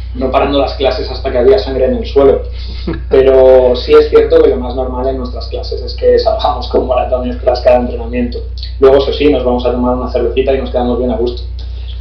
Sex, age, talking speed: male, 30-49, 225 wpm